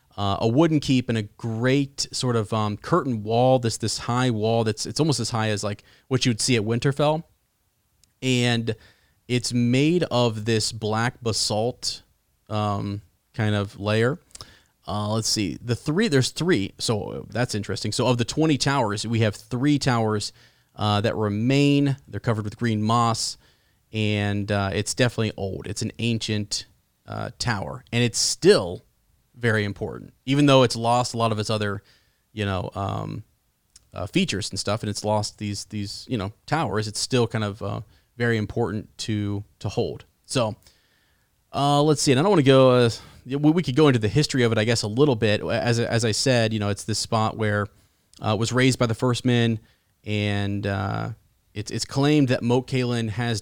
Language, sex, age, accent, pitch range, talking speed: English, male, 30-49, American, 105-125 Hz, 190 wpm